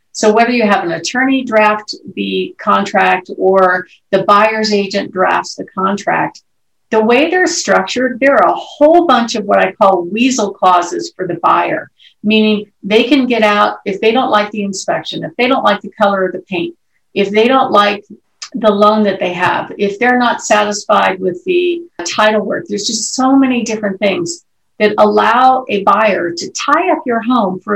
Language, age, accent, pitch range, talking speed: English, 50-69, American, 200-260 Hz, 190 wpm